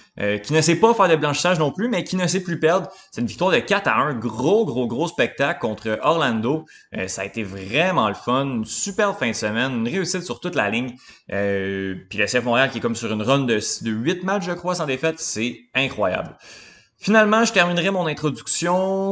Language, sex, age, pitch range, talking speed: French, male, 20-39, 110-160 Hz, 225 wpm